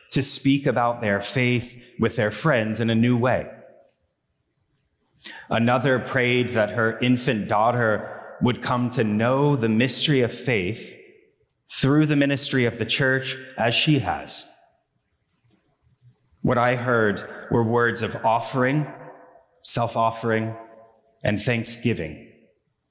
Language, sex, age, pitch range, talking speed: English, male, 30-49, 110-125 Hz, 120 wpm